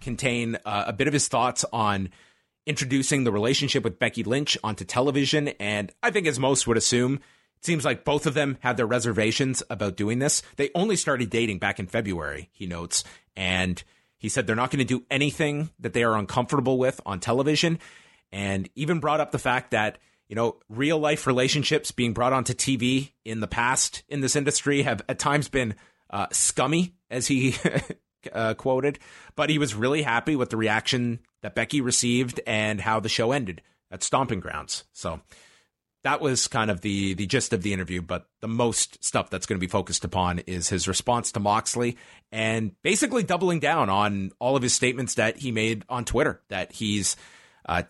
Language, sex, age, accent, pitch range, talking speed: English, male, 30-49, American, 110-140 Hz, 195 wpm